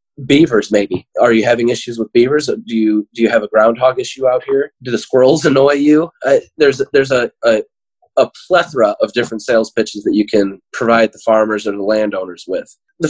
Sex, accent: male, American